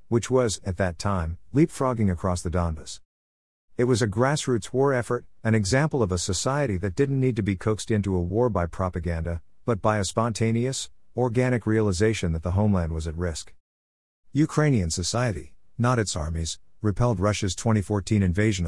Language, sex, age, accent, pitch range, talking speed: English, male, 50-69, American, 90-120 Hz, 165 wpm